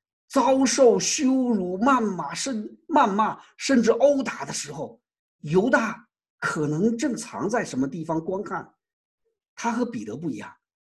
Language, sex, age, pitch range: Chinese, male, 50-69, 165-260 Hz